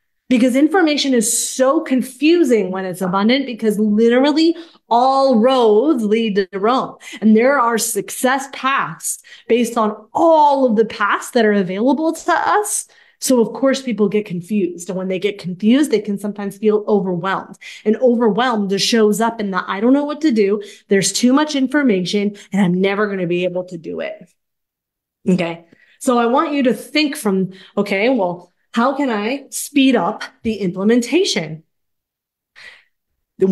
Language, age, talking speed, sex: English, 20-39, 165 wpm, female